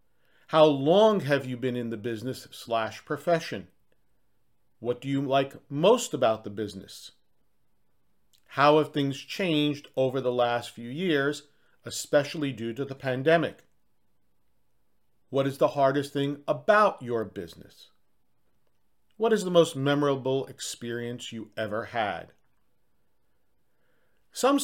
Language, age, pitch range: English, 40-59, 125-155 Hz